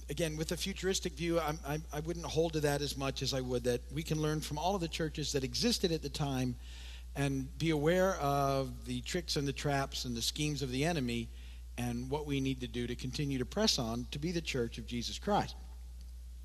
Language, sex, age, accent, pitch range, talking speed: English, male, 50-69, American, 115-165 Hz, 235 wpm